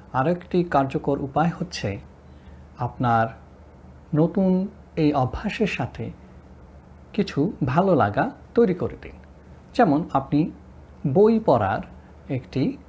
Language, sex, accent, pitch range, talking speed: Bengali, male, native, 100-155 Hz, 100 wpm